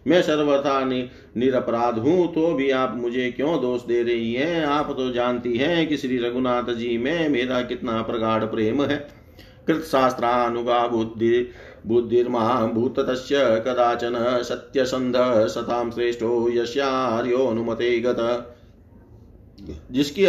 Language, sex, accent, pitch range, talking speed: Hindi, male, native, 120-135 Hz, 110 wpm